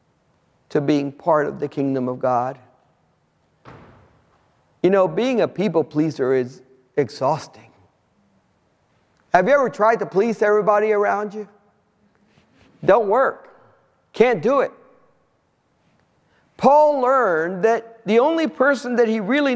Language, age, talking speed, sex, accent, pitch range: English, 50-69, 120 wpm, male, American, 170-255 Hz